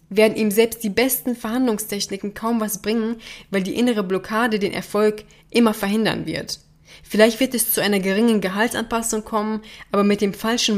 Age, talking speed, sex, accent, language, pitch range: 20-39, 165 wpm, female, German, German, 180-215 Hz